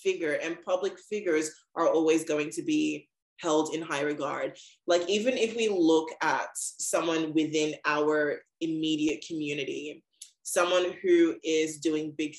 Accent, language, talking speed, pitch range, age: American, English, 140 wpm, 150-175 Hz, 20-39